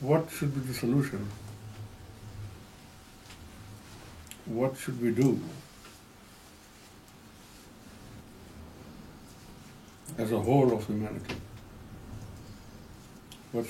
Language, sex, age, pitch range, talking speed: Urdu, male, 60-79, 95-120 Hz, 65 wpm